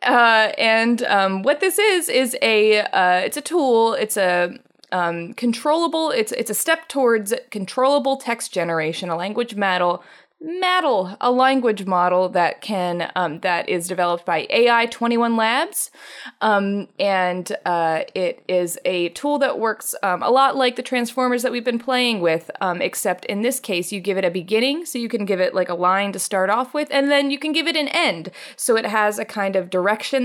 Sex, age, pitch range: female, 20-39, 180-245 Hz